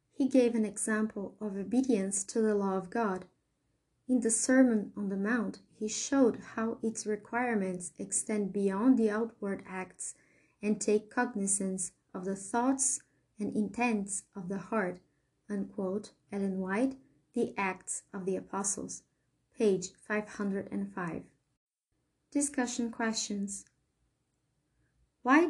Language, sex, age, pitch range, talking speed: English, female, 20-39, 200-240 Hz, 125 wpm